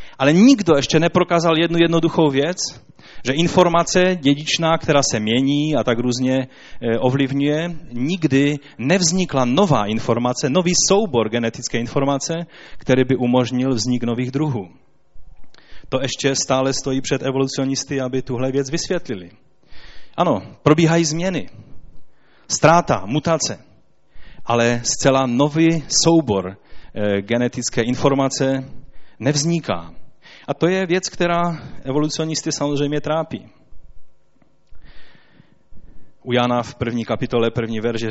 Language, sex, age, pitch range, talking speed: Czech, male, 30-49, 110-150 Hz, 105 wpm